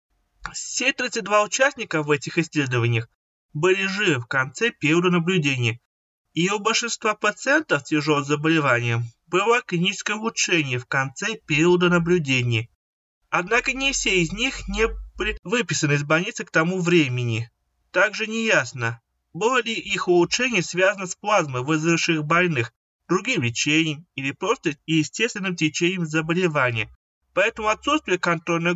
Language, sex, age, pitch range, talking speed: Russian, male, 20-39, 135-200 Hz, 125 wpm